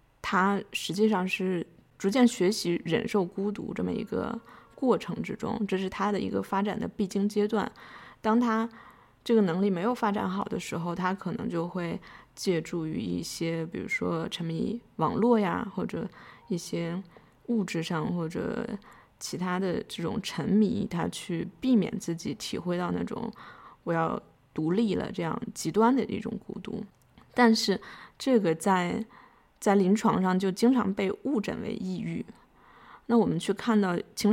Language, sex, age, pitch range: Chinese, female, 20-39, 185-225 Hz